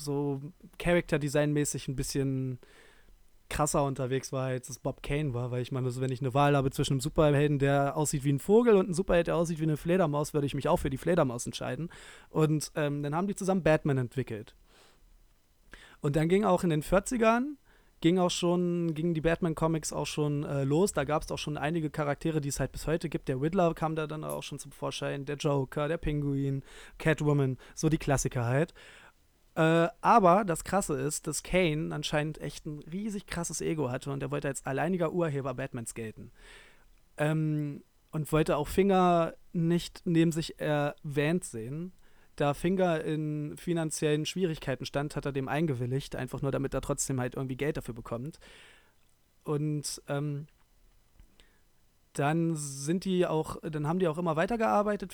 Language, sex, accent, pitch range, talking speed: German, male, German, 140-170 Hz, 180 wpm